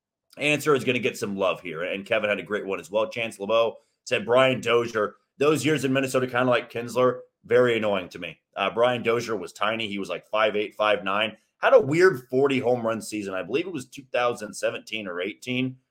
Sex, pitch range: male, 105-130 Hz